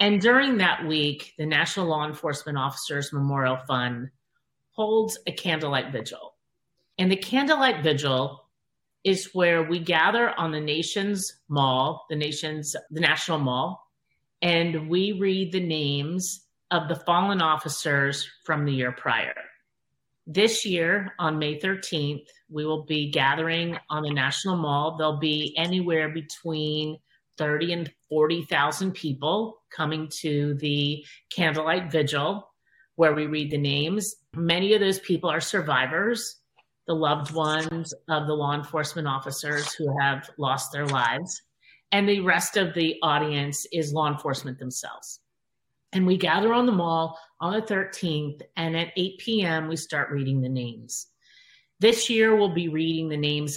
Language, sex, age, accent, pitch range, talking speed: English, female, 40-59, American, 145-180 Hz, 145 wpm